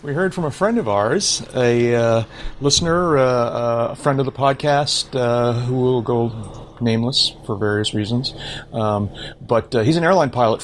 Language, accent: English, American